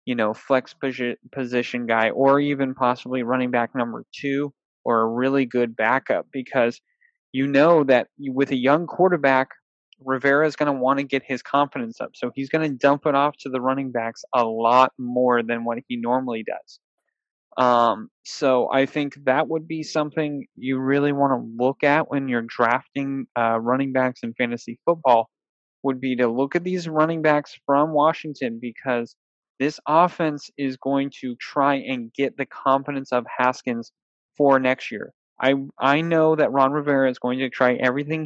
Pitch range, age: 125-145 Hz, 20-39